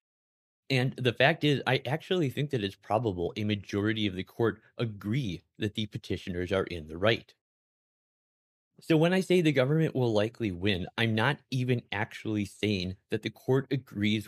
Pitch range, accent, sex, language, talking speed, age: 100-135 Hz, American, male, English, 170 wpm, 30-49